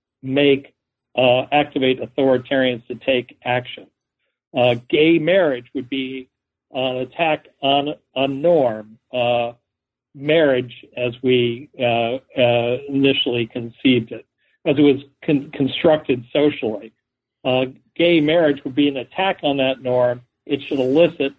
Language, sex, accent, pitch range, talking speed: English, male, American, 125-145 Hz, 125 wpm